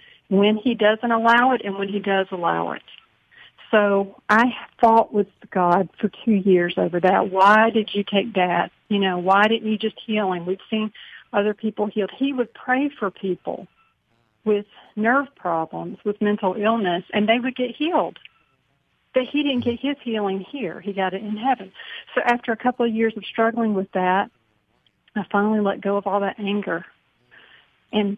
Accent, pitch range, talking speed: American, 190-220 Hz, 185 wpm